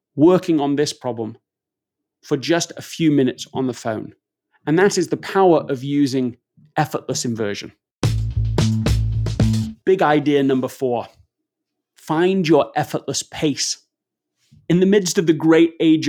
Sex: male